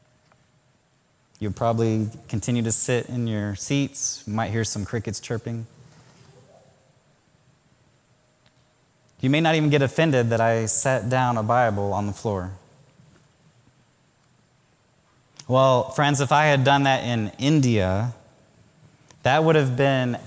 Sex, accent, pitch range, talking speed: male, American, 120-145 Hz, 120 wpm